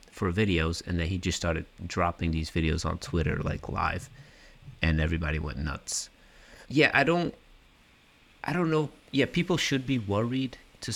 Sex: male